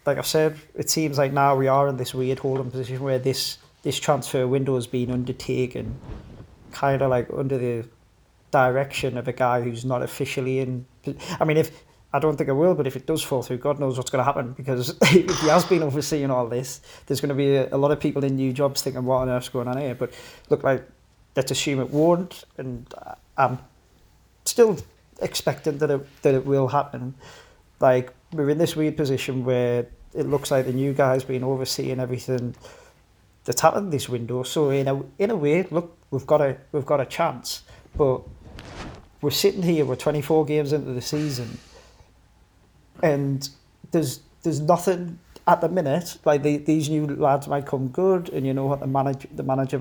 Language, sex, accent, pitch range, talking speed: English, male, British, 125-150 Hz, 200 wpm